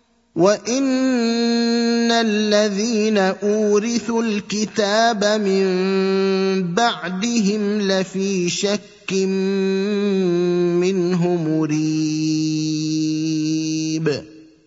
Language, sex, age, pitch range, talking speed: Arabic, male, 30-49, 190-235 Hz, 40 wpm